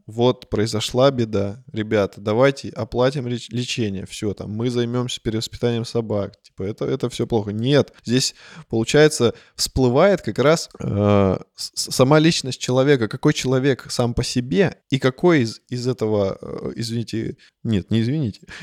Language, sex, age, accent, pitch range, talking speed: Russian, male, 20-39, native, 110-135 Hz, 140 wpm